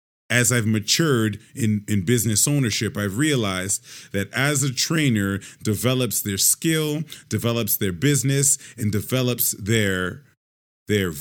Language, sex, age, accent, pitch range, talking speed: English, male, 30-49, American, 100-135 Hz, 125 wpm